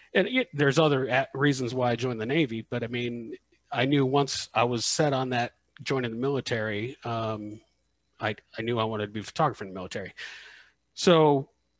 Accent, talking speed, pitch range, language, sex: American, 190 wpm, 110-130 Hz, English, male